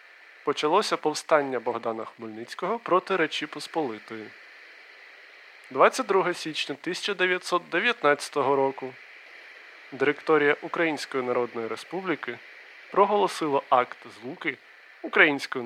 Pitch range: 125-185 Hz